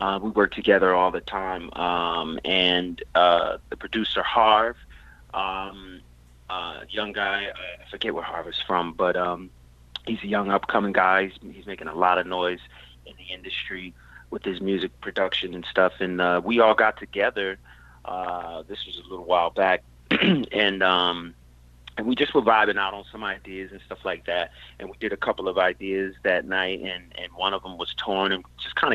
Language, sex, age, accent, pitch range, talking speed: English, male, 30-49, American, 85-100 Hz, 195 wpm